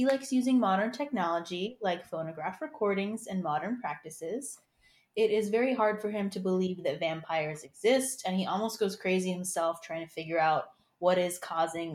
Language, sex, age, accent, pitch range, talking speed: English, female, 20-39, American, 175-235 Hz, 175 wpm